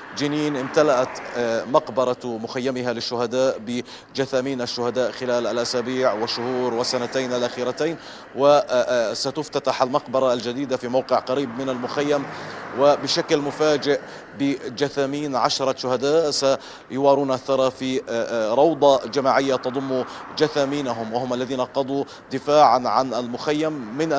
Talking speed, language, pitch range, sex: 95 wpm, Arabic, 125-145 Hz, male